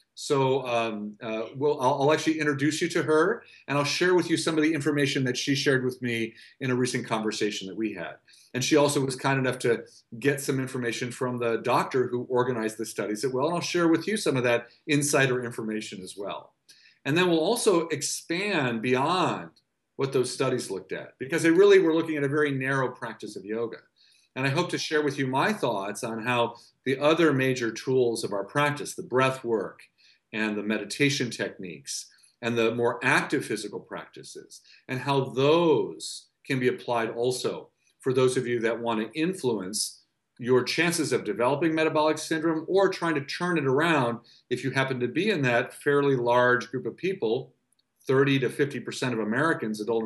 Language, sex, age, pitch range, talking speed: English, male, 40-59, 120-155 Hz, 195 wpm